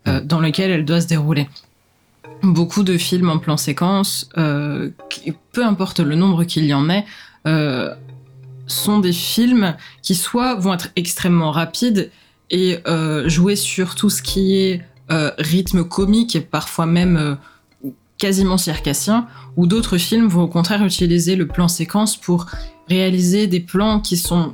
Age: 20-39